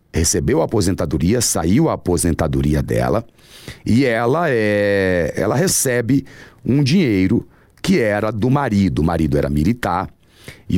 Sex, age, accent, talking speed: male, 40-59, Brazilian, 130 wpm